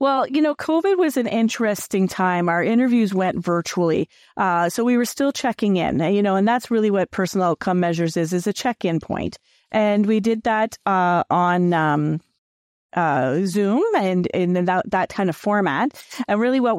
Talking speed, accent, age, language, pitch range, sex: 185 wpm, American, 40-59, English, 185-230 Hz, female